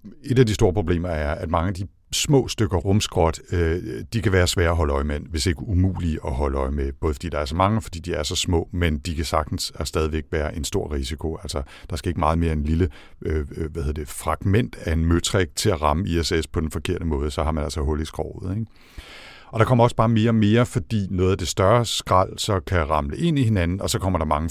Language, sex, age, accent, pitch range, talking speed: Danish, male, 60-79, native, 75-95 Hz, 255 wpm